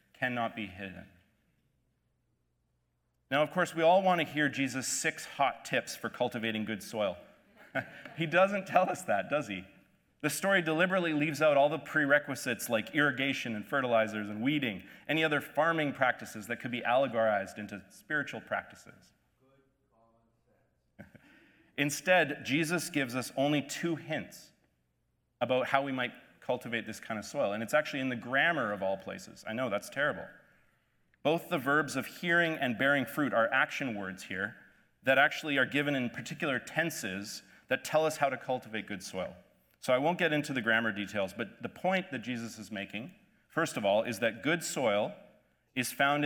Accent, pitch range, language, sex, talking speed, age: American, 115-150 Hz, English, male, 170 wpm, 30-49